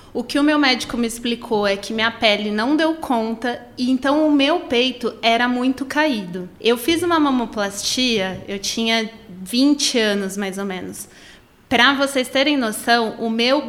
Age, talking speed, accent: 20-39, 170 wpm, Brazilian